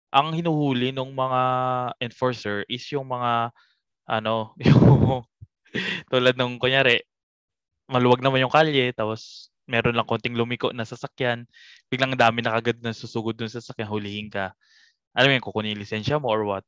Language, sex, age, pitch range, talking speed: Filipino, male, 20-39, 115-140 Hz, 155 wpm